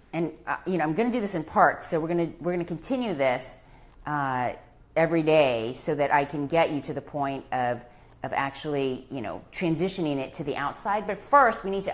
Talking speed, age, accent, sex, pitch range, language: 235 wpm, 30-49, American, female, 150-200 Hz, English